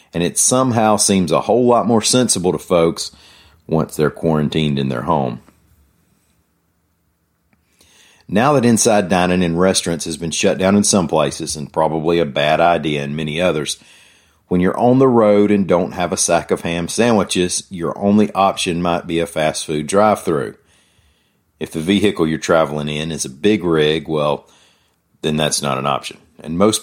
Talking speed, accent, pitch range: 175 wpm, American, 80-100 Hz